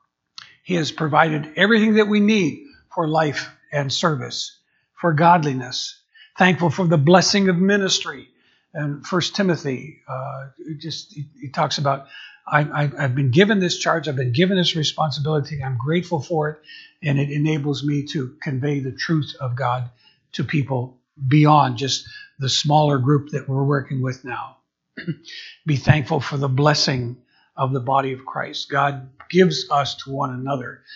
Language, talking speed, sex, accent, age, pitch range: English, 155 wpm, male, American, 60-79, 140-175 Hz